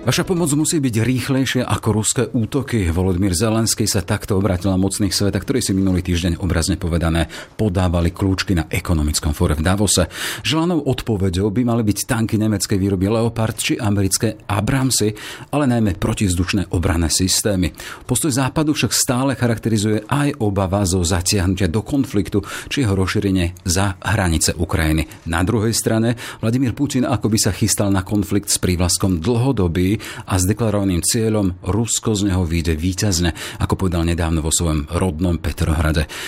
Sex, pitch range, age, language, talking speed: male, 90-115 Hz, 40-59, Slovak, 150 wpm